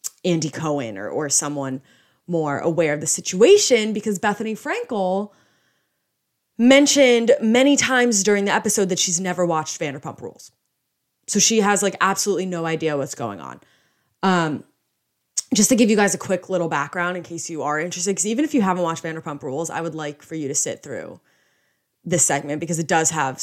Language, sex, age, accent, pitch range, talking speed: English, female, 20-39, American, 160-205 Hz, 185 wpm